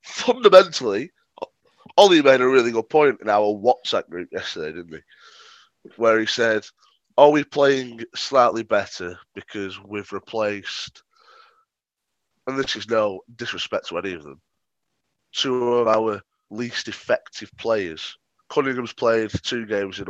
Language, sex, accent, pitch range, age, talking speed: English, male, British, 105-135 Hz, 20-39, 135 wpm